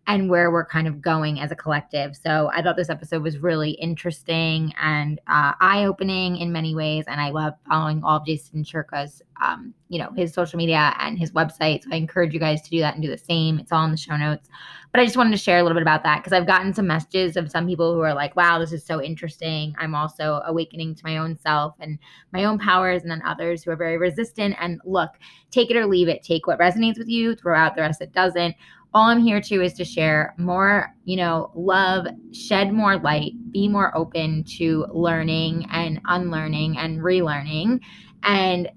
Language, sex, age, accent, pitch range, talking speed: English, female, 20-39, American, 155-180 Hz, 225 wpm